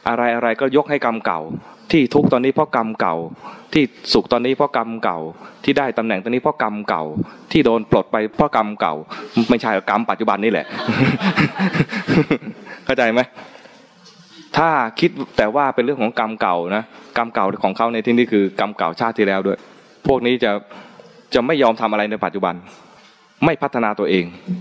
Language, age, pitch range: English, 20-39, 95-125 Hz